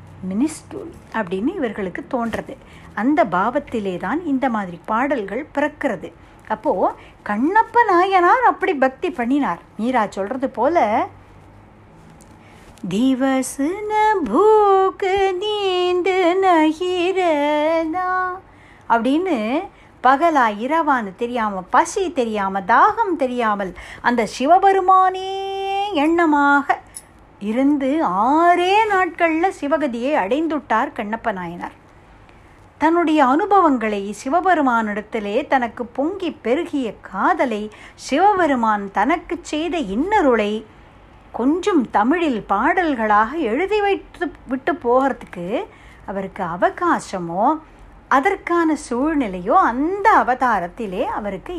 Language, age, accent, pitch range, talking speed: Tamil, 60-79, native, 225-355 Hz, 75 wpm